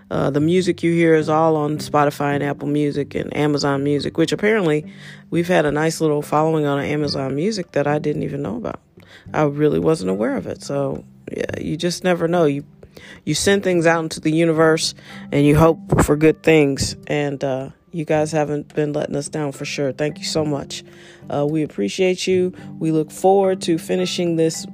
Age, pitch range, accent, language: 40-59, 145-170 Hz, American, English